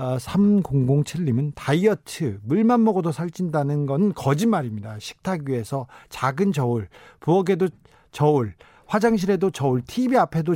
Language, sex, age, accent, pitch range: Korean, male, 40-59, native, 130-195 Hz